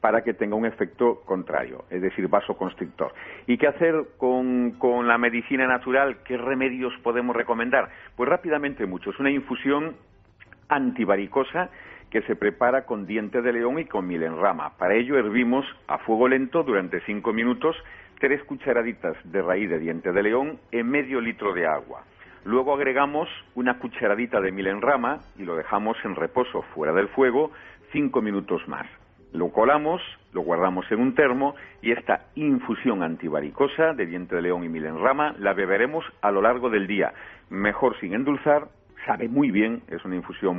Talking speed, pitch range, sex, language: 165 wpm, 100-135 Hz, male, Spanish